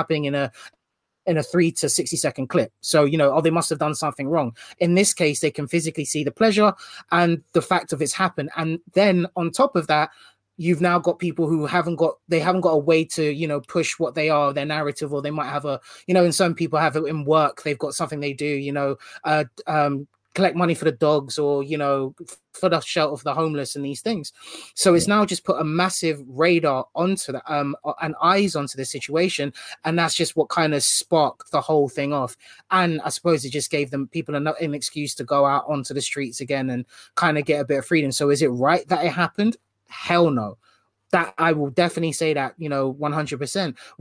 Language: English